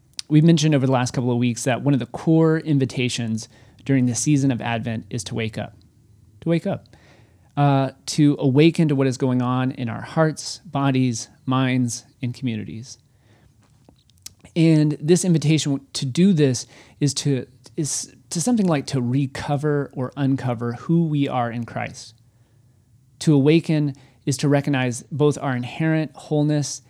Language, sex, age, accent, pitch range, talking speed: English, male, 30-49, American, 120-145 Hz, 160 wpm